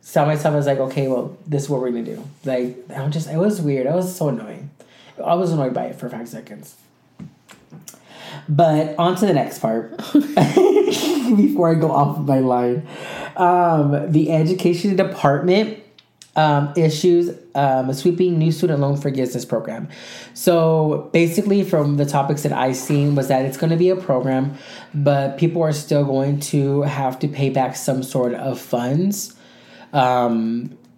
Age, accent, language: 20-39, American, English